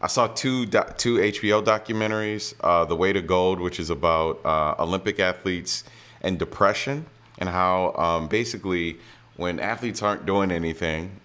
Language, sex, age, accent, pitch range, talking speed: English, male, 30-49, American, 80-100 Hz, 150 wpm